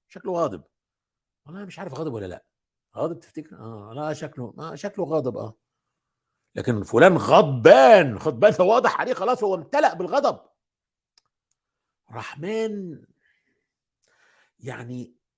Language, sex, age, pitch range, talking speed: Arabic, male, 50-69, 155-205 Hz, 115 wpm